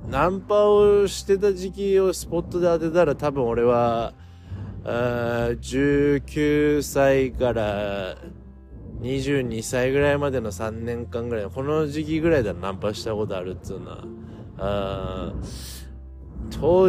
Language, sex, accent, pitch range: Japanese, male, native, 100-140 Hz